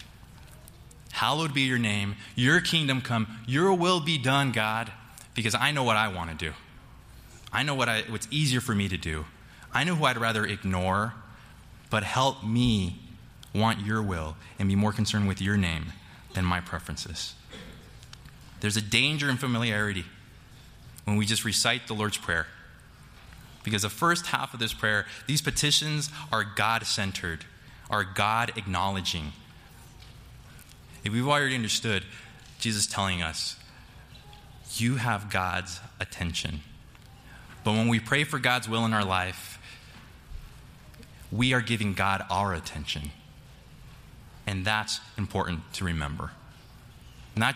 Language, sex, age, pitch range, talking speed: English, male, 20-39, 100-125 Hz, 135 wpm